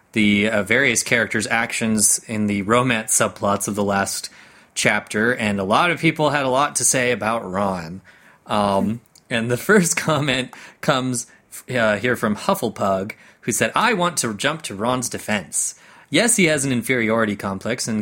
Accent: American